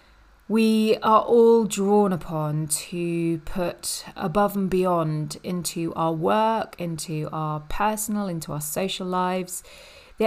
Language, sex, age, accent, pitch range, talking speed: English, female, 30-49, British, 170-215 Hz, 125 wpm